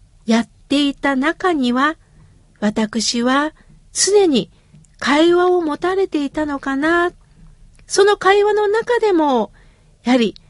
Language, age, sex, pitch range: Japanese, 50-69, female, 275-395 Hz